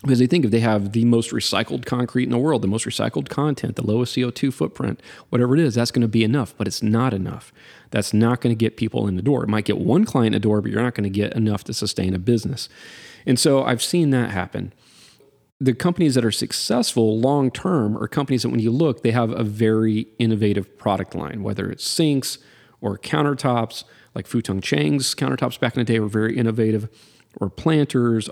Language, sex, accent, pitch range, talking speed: English, male, American, 110-130 Hz, 220 wpm